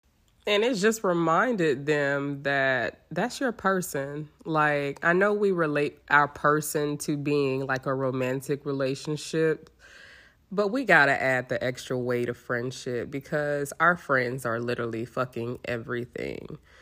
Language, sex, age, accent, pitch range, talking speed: English, female, 20-39, American, 130-165 Hz, 140 wpm